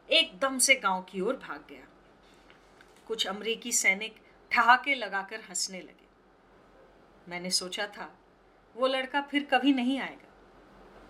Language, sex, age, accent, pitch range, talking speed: Hindi, female, 30-49, native, 205-285 Hz, 125 wpm